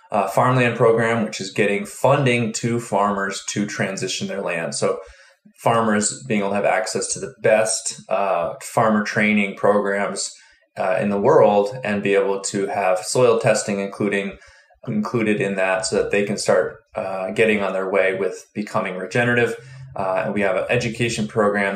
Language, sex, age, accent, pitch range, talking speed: English, male, 20-39, American, 100-120 Hz, 170 wpm